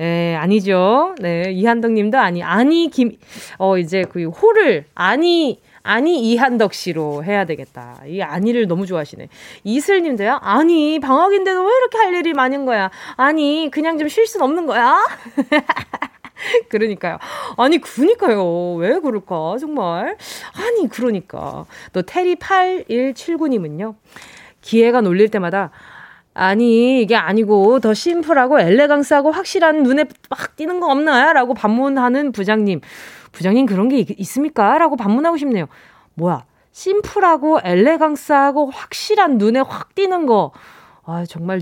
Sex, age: female, 20-39